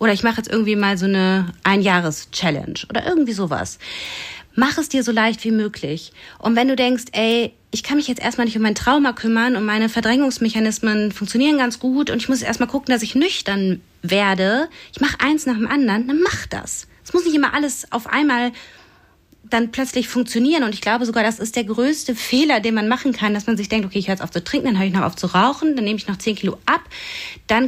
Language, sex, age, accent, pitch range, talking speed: German, female, 30-49, German, 195-260 Hz, 235 wpm